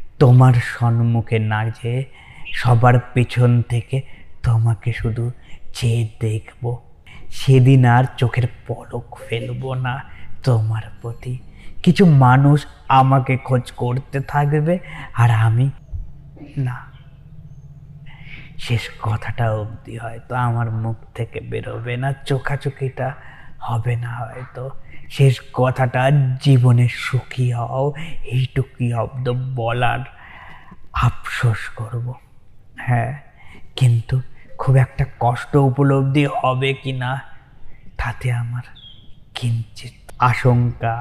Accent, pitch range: native, 120-135 Hz